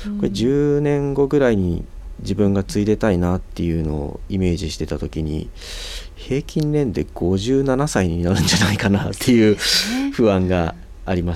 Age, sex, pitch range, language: 40-59, male, 85-105 Hz, Japanese